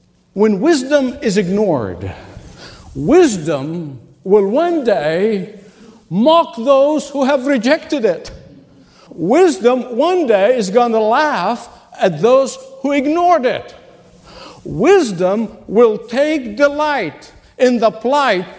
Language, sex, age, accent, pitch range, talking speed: English, male, 60-79, American, 175-255 Hz, 105 wpm